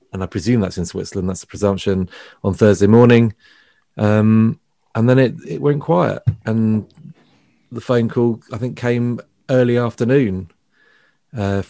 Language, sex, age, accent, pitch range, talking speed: English, male, 30-49, British, 100-120 Hz, 150 wpm